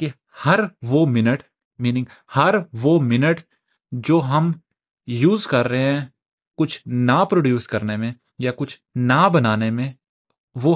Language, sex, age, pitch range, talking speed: Urdu, male, 30-49, 120-160 Hz, 135 wpm